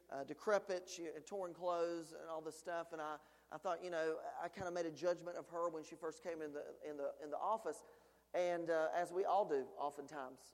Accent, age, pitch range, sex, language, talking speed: American, 40-59, 170-200 Hz, male, English, 240 wpm